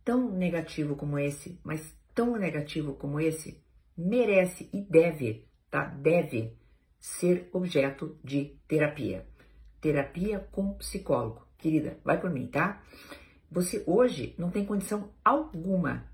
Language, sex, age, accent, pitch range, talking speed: Romanian, female, 50-69, Brazilian, 150-210 Hz, 120 wpm